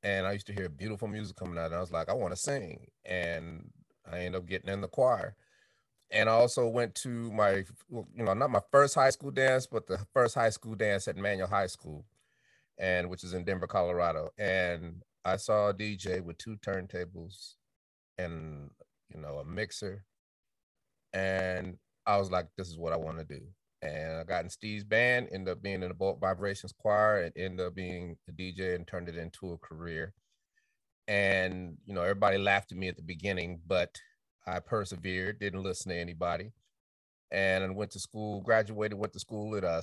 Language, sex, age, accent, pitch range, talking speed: English, male, 30-49, American, 90-105 Hz, 200 wpm